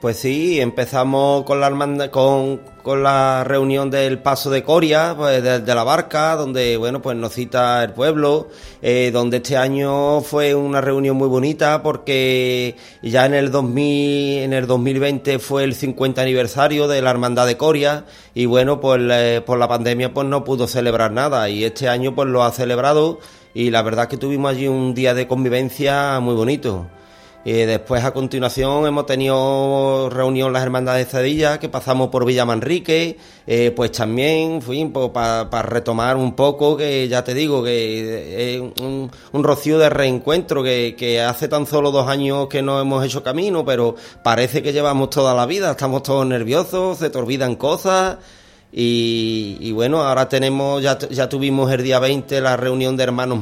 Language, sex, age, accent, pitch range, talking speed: Spanish, male, 30-49, Spanish, 125-140 Hz, 175 wpm